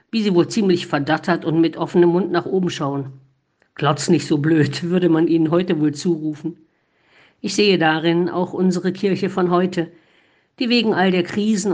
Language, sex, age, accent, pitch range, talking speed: German, female, 50-69, German, 160-200 Hz, 180 wpm